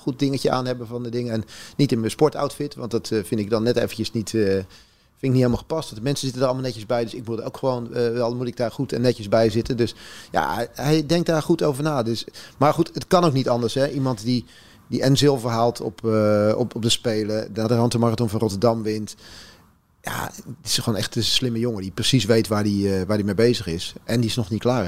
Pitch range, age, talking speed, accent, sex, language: 105-130 Hz, 30-49, 265 wpm, Dutch, male, Dutch